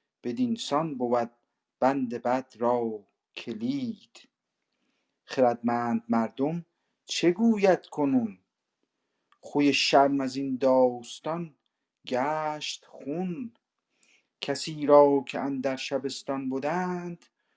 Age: 50-69